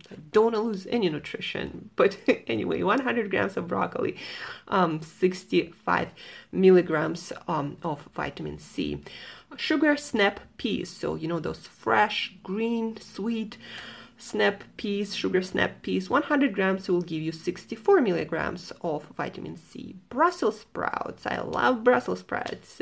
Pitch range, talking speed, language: 165-240 Hz, 130 wpm, English